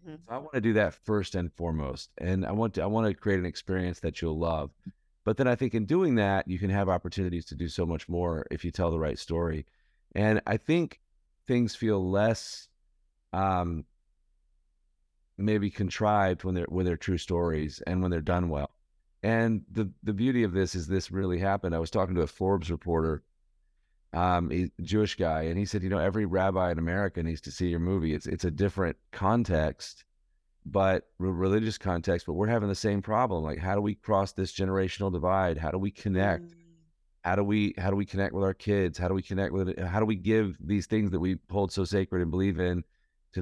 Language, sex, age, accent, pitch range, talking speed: English, male, 30-49, American, 85-100 Hz, 220 wpm